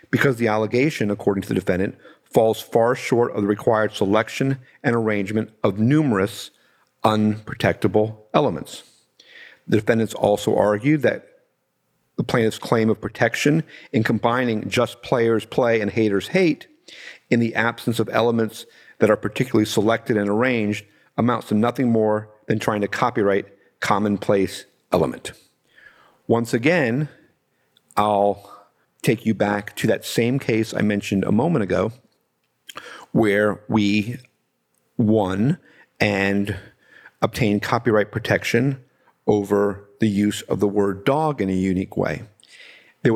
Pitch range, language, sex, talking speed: 100-115 Hz, English, male, 130 wpm